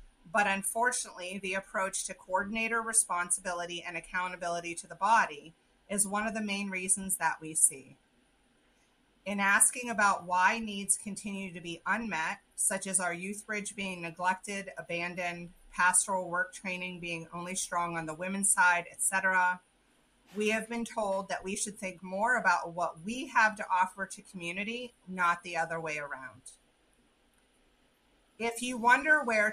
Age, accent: 30-49, American